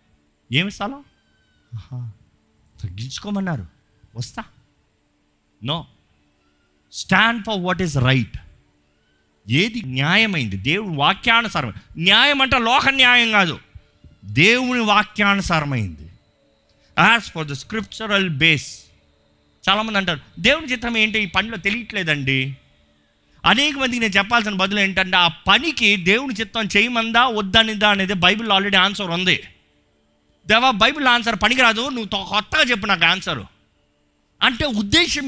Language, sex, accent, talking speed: Telugu, male, native, 105 wpm